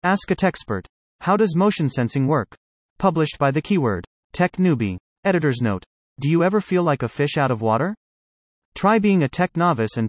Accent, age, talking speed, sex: American, 30-49, 190 wpm, male